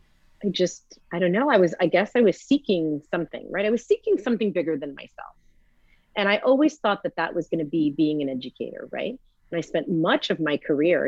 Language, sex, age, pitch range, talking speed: English, female, 30-49, 155-215 Hz, 225 wpm